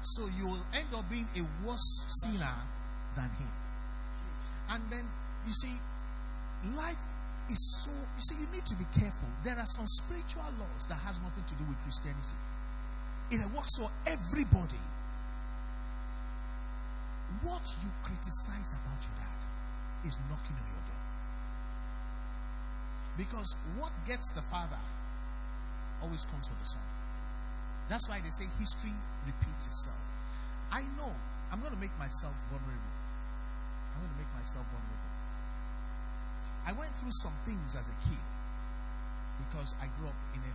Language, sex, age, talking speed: English, male, 50-69, 145 wpm